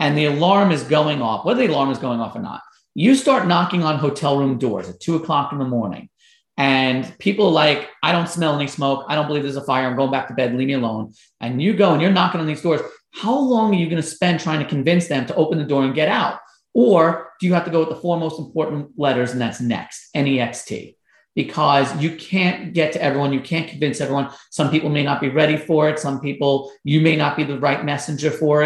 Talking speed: 255 wpm